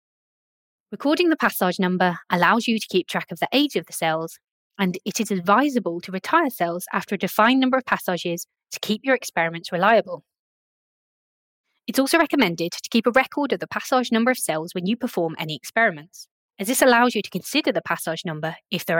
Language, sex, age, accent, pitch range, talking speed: English, female, 20-39, British, 175-240 Hz, 195 wpm